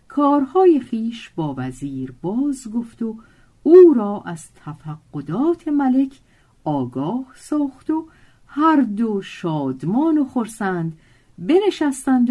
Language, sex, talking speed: Persian, female, 100 wpm